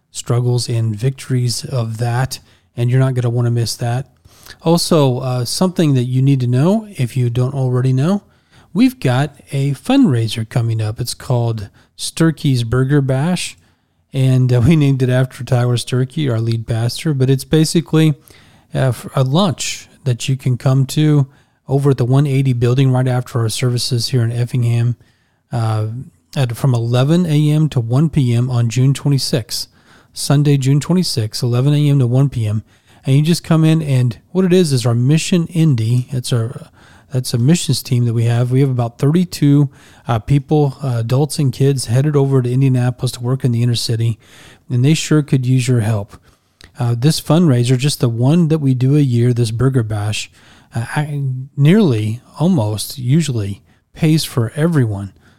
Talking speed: 170 wpm